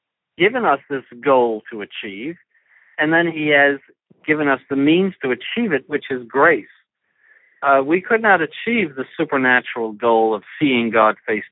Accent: American